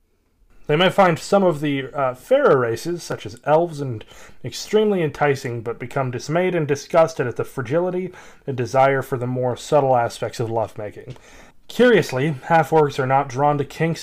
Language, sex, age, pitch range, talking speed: English, male, 30-49, 125-155 Hz, 165 wpm